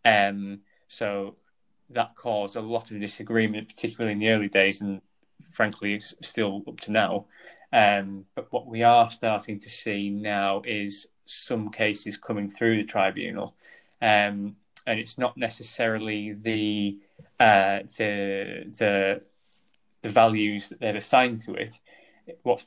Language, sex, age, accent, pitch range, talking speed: English, male, 20-39, British, 105-115 Hz, 140 wpm